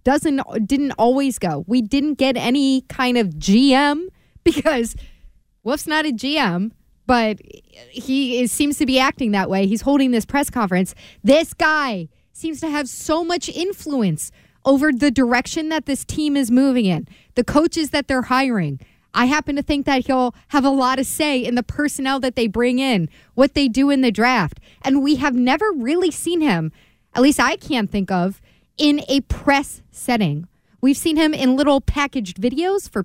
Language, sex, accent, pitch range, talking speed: English, female, American, 230-295 Hz, 180 wpm